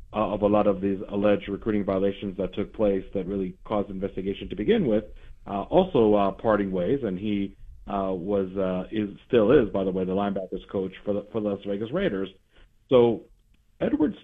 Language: English